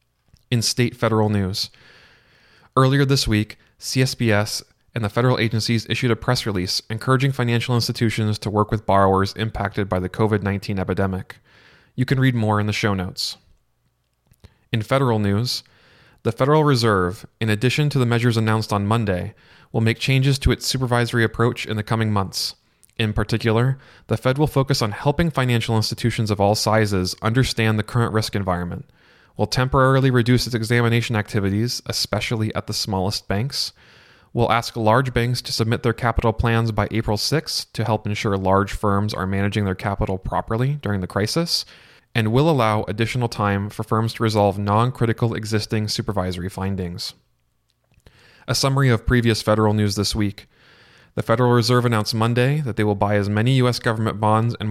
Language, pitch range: English, 105-120 Hz